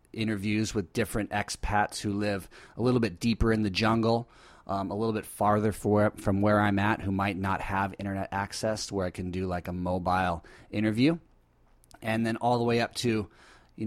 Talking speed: 190 wpm